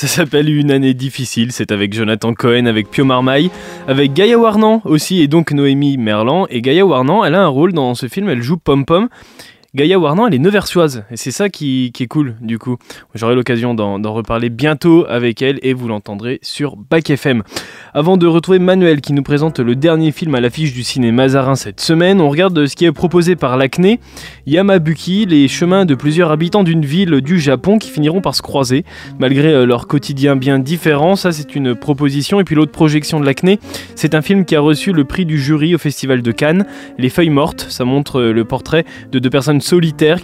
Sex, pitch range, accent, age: male, 130-170 Hz, French, 20-39